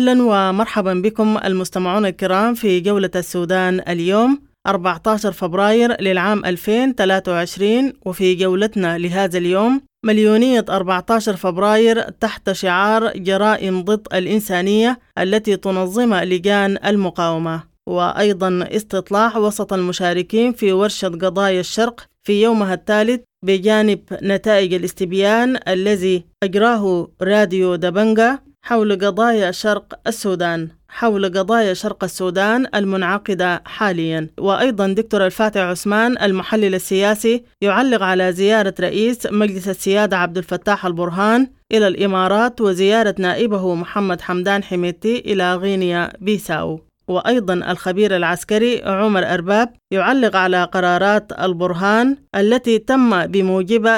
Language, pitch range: English, 185-220 Hz